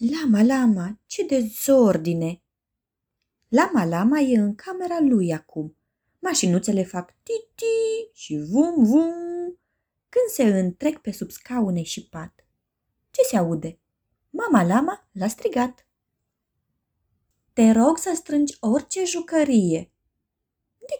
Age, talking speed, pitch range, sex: 20-39, 110 wpm, 170-255 Hz, female